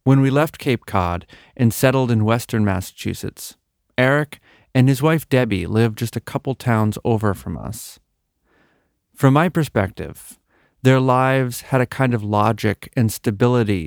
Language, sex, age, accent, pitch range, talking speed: English, male, 30-49, American, 105-130 Hz, 150 wpm